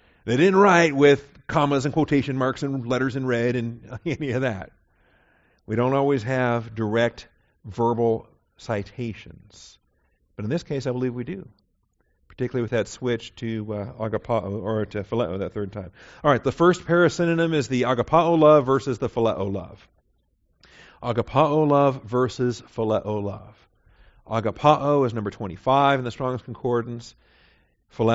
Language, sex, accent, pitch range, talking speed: English, male, American, 105-130 Hz, 150 wpm